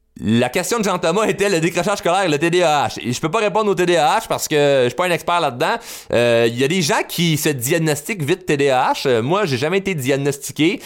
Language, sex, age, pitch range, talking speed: French, male, 30-49, 115-155 Hz, 240 wpm